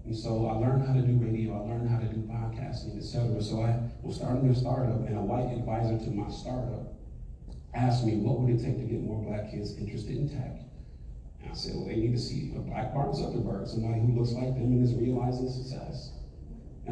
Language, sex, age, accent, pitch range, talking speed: English, male, 40-59, American, 110-130 Hz, 230 wpm